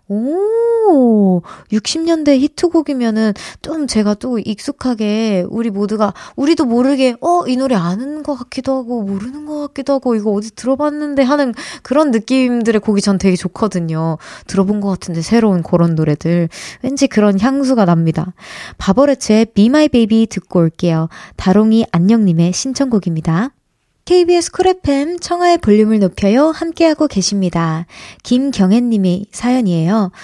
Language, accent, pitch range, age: Korean, native, 200-290 Hz, 20-39